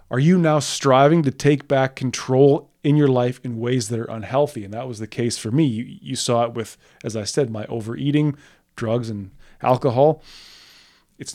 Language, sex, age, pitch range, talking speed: English, male, 20-39, 120-145 Hz, 195 wpm